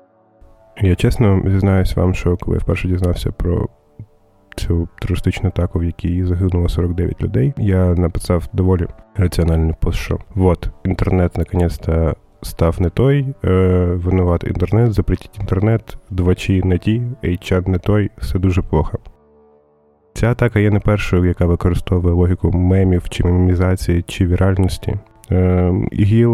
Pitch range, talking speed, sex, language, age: 90-100 Hz, 130 wpm, male, Ukrainian, 20-39